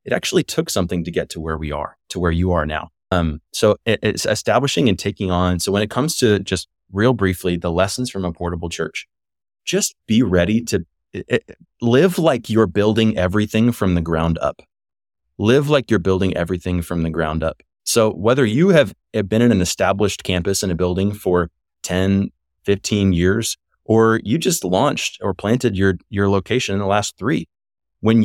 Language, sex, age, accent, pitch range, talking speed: English, male, 20-39, American, 85-110 Hz, 190 wpm